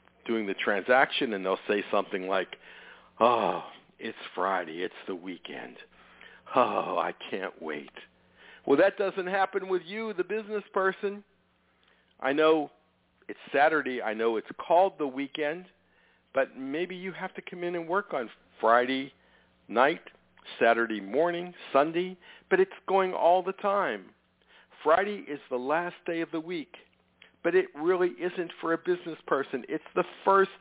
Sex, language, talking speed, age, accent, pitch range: male, English, 150 wpm, 60-79, American, 135-185 Hz